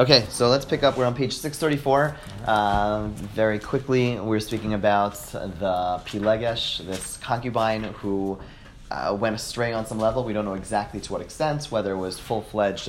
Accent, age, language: American, 30-49, English